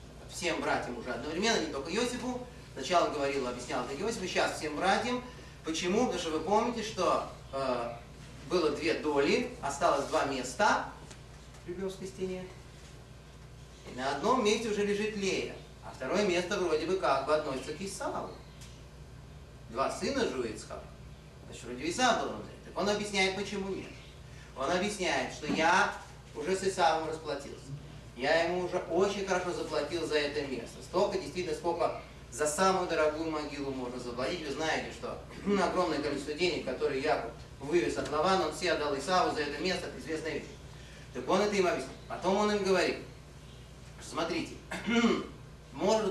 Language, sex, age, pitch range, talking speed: Russian, male, 30-49, 145-195 Hz, 155 wpm